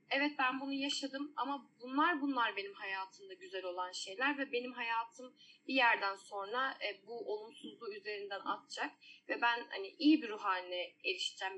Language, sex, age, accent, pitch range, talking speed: Turkish, female, 10-29, native, 235-310 Hz, 155 wpm